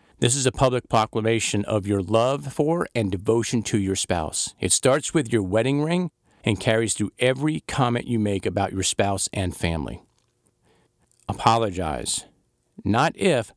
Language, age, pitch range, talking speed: English, 50-69, 100-125 Hz, 155 wpm